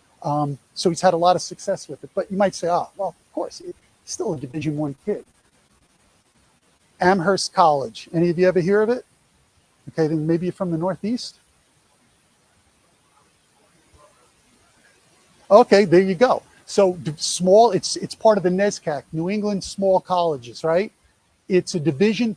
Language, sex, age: English, male, 40-59